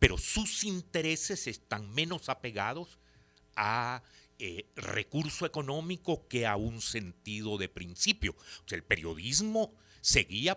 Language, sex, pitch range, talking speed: Spanish, male, 85-130 Hz, 110 wpm